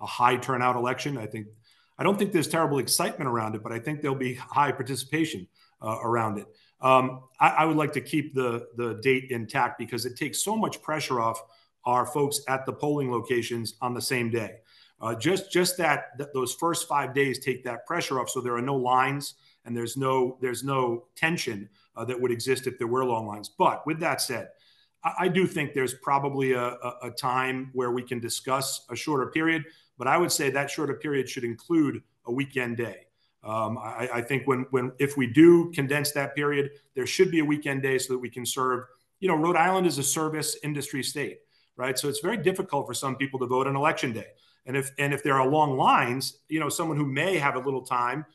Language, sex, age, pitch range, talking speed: English, male, 40-59, 125-150 Hz, 225 wpm